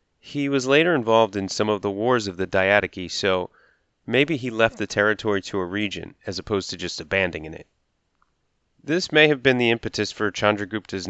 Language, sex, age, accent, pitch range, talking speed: English, male, 30-49, American, 100-125 Hz, 190 wpm